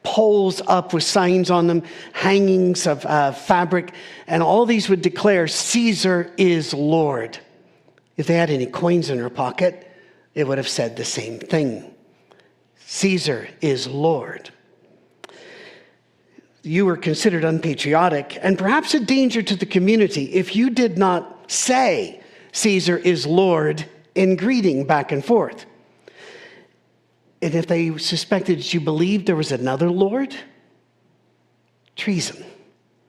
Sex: male